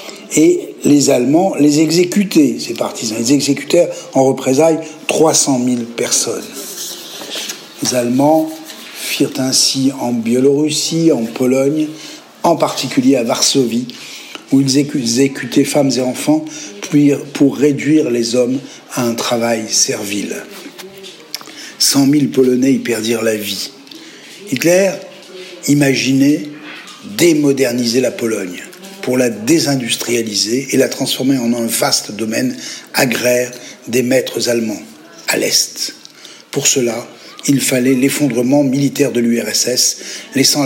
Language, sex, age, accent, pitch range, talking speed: French, male, 60-79, French, 125-155 Hz, 115 wpm